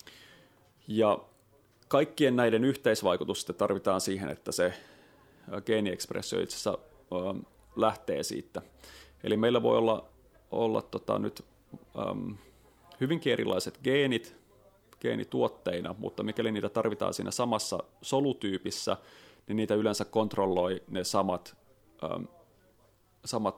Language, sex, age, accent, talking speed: Finnish, male, 30-49, native, 105 wpm